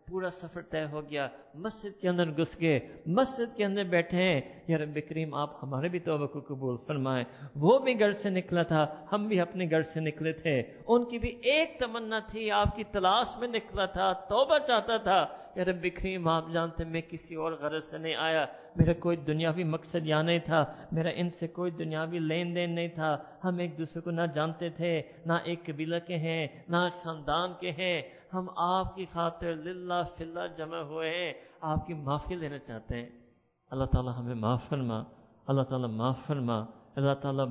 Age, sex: 50-69, male